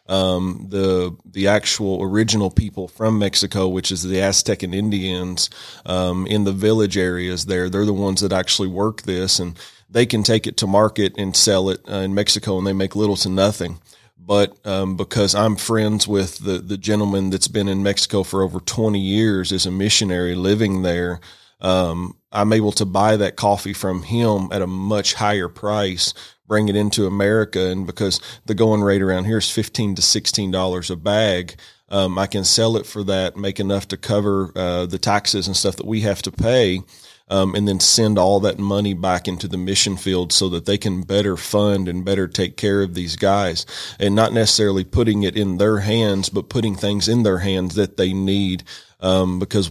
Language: English